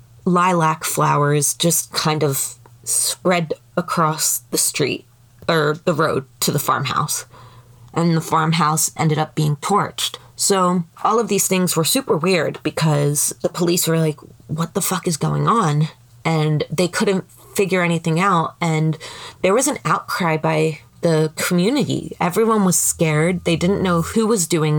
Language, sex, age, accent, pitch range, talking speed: English, female, 20-39, American, 150-180 Hz, 155 wpm